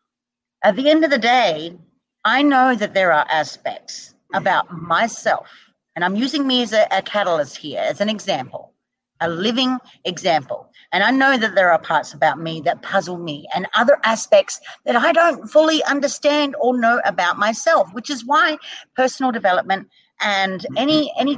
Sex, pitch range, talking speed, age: female, 200-265 Hz, 170 wpm, 40-59